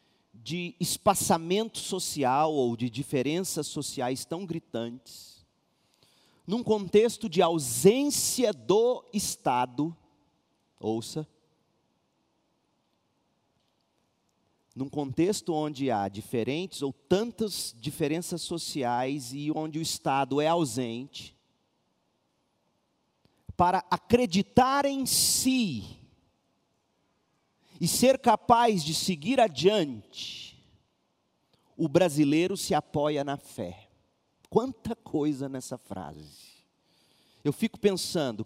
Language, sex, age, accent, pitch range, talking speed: Portuguese, male, 40-59, Brazilian, 140-210 Hz, 85 wpm